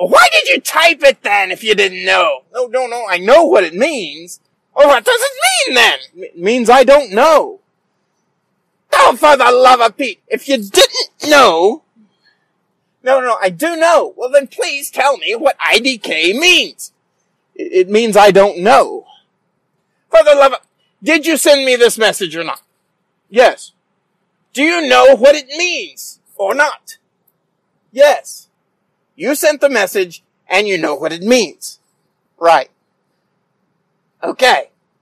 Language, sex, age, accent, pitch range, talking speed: English, male, 30-49, American, 185-275 Hz, 160 wpm